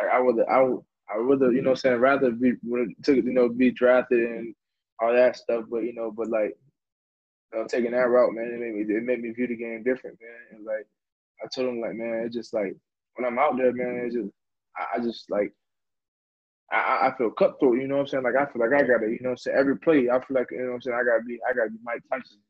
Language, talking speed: English, 280 wpm